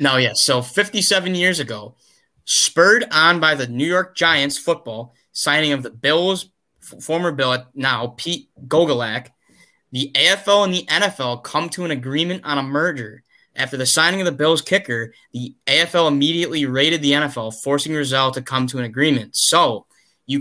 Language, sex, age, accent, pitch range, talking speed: English, male, 20-39, American, 125-155 Hz, 170 wpm